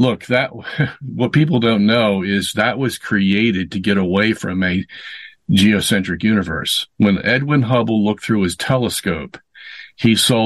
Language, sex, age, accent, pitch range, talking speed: English, male, 50-69, American, 100-120 Hz, 150 wpm